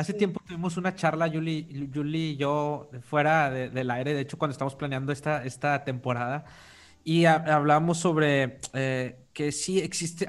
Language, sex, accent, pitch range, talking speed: Spanish, male, Mexican, 135-170 Hz, 160 wpm